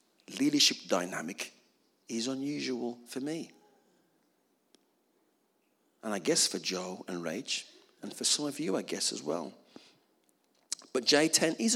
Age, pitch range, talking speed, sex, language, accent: 50-69, 115-170 Hz, 130 wpm, male, English, British